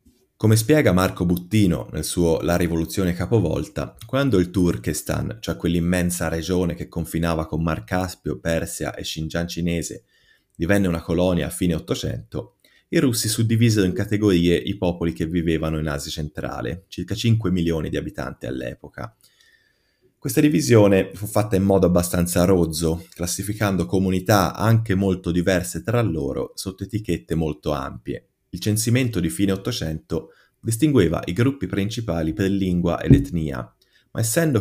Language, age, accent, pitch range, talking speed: Italian, 30-49, native, 85-105 Hz, 140 wpm